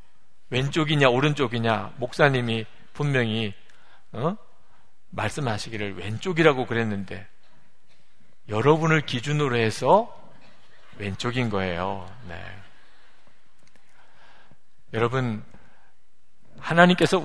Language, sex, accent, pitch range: Korean, male, native, 110-165 Hz